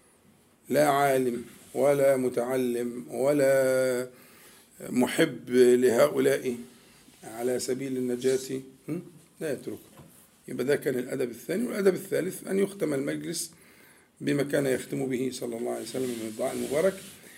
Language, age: Arabic, 50-69